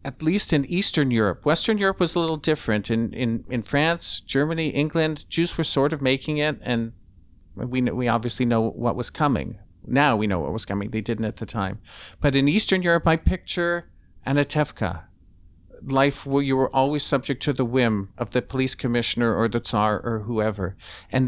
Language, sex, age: English, male, 50-69